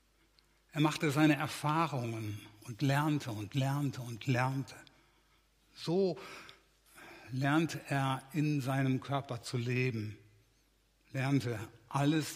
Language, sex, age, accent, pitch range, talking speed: German, male, 60-79, German, 125-155 Hz, 95 wpm